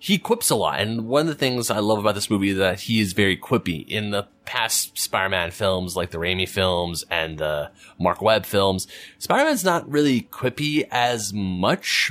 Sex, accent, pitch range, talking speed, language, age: male, American, 95-140 Hz, 205 wpm, English, 30-49